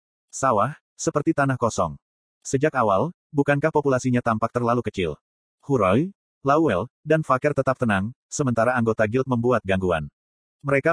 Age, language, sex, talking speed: 30-49, Indonesian, male, 125 wpm